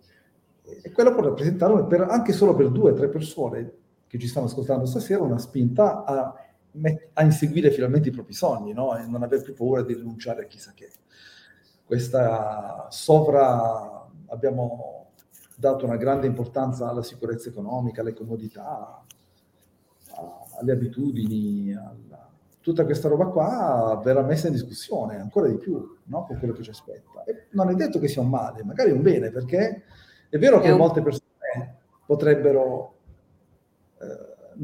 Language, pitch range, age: Italian, 125-170 Hz, 40-59